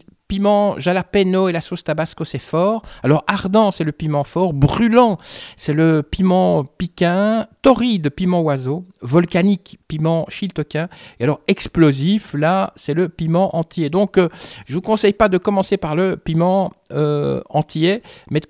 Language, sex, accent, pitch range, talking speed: French, male, French, 160-205 Hz, 160 wpm